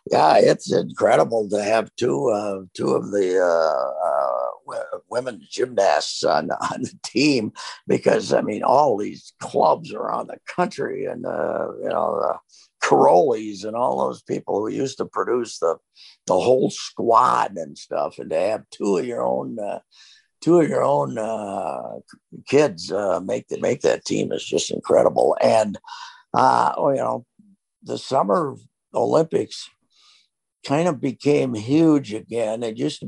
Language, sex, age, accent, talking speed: English, male, 60-79, American, 160 wpm